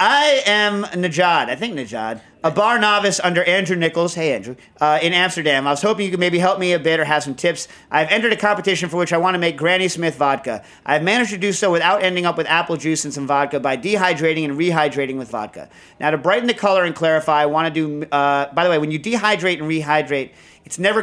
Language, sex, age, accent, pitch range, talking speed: English, male, 40-59, American, 140-170 Hz, 245 wpm